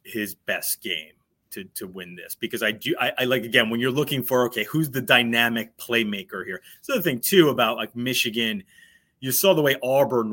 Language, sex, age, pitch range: English, male, 30-49, 115-140 Hz